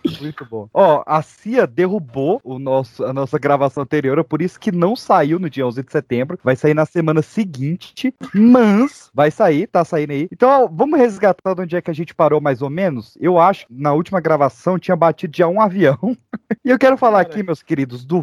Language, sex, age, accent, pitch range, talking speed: Portuguese, male, 30-49, Brazilian, 150-200 Hz, 215 wpm